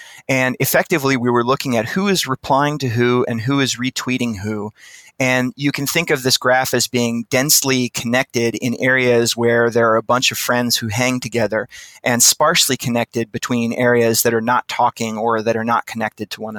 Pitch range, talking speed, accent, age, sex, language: 115-130 Hz, 200 wpm, American, 30-49, male, English